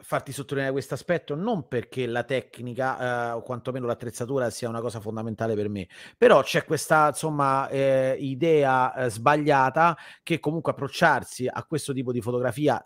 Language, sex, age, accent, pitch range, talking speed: Italian, male, 30-49, native, 115-140 Hz, 160 wpm